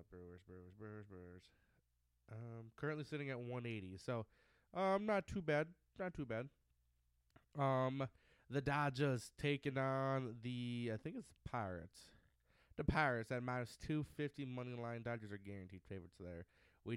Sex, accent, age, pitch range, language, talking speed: male, American, 20-39, 90-135 Hz, English, 135 wpm